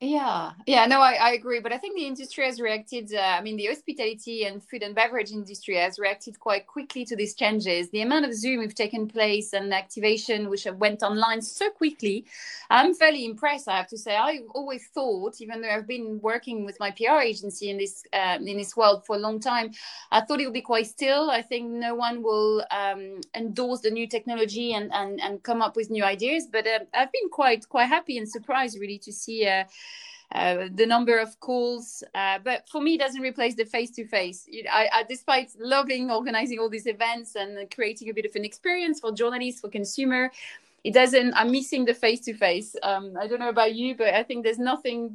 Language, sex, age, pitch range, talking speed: English, female, 30-49, 210-250 Hz, 220 wpm